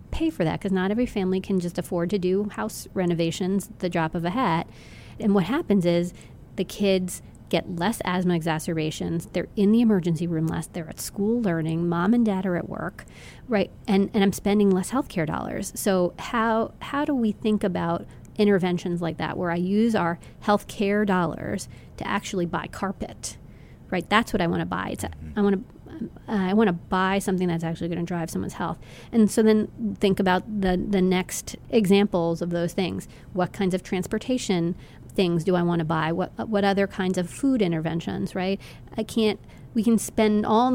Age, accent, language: 30-49, American, English